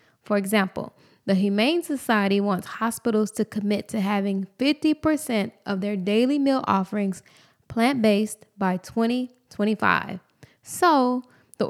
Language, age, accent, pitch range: English, 10-29, American, 200-255 Hz